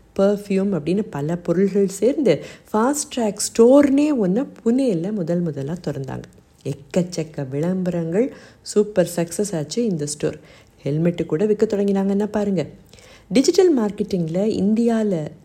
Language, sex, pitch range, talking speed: Tamil, female, 165-210 Hz, 105 wpm